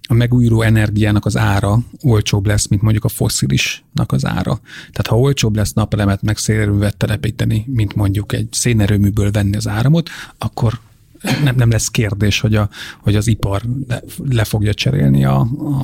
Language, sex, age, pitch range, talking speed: Hungarian, male, 30-49, 105-120 Hz, 165 wpm